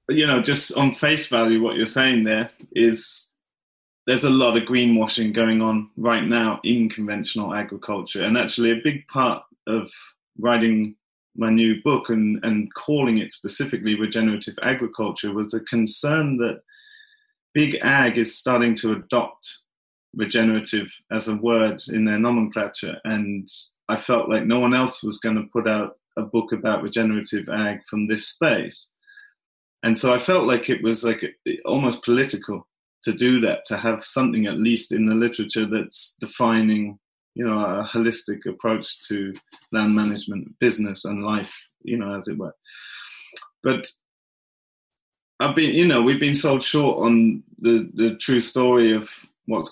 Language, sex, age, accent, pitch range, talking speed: English, male, 30-49, British, 110-120 Hz, 160 wpm